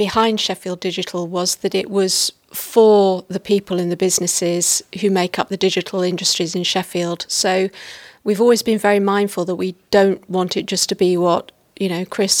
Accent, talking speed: British, 190 wpm